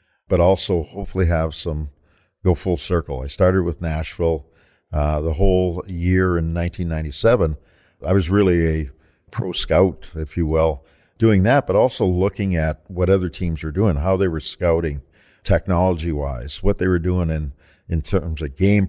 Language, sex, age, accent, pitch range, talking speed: English, male, 50-69, American, 80-90 Hz, 170 wpm